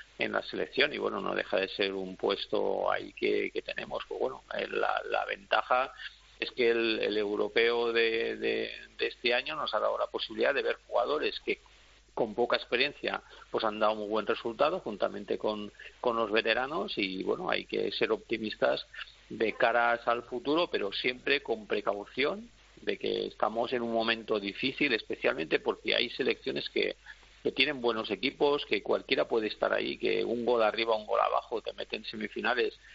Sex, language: male, Spanish